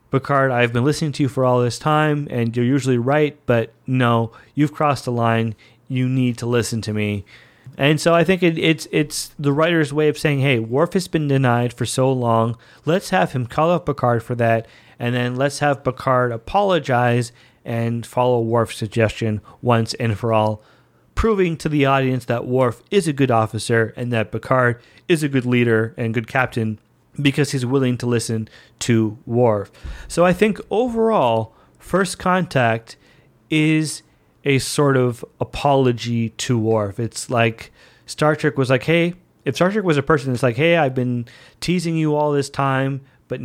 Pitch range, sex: 115-150 Hz, male